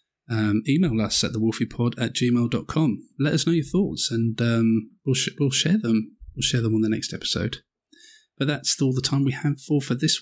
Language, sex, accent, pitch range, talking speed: English, male, British, 115-140 Hz, 210 wpm